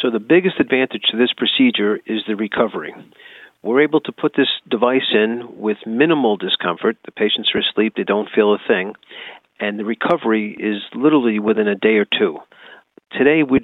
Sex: male